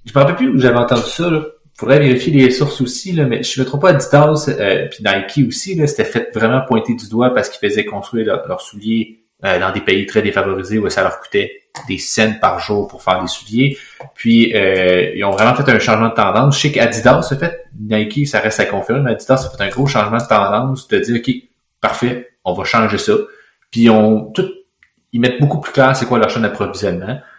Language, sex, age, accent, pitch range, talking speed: French, male, 30-49, Canadian, 110-135 Hz, 240 wpm